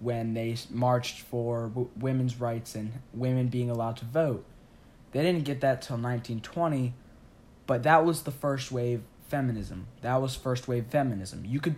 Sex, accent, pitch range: male, American, 120-140 Hz